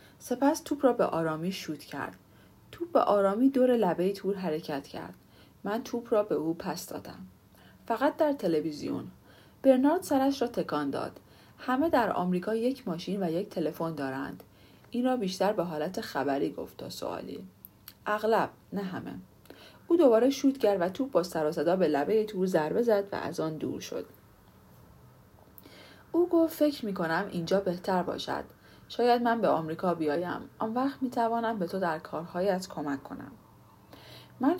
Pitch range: 165-235 Hz